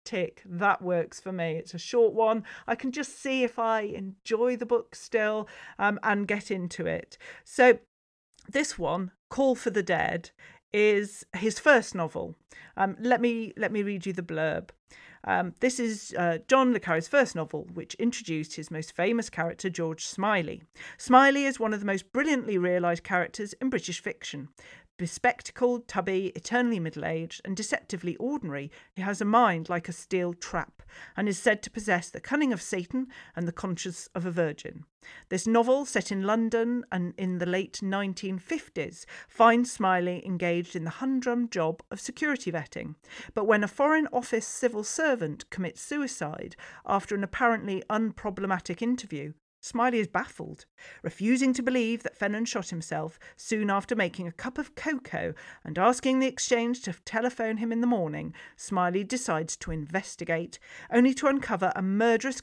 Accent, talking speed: British, 165 wpm